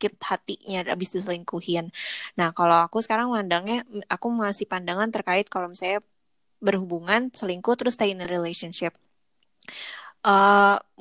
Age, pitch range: 20-39, 180-210 Hz